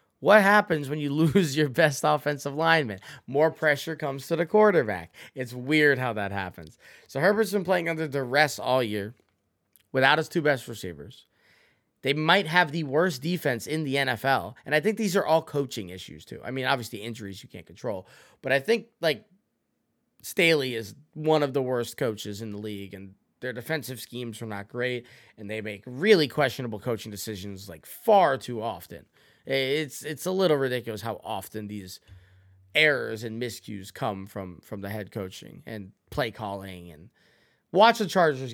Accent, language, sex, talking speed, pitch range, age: American, English, male, 175 wpm, 110-160 Hz, 20-39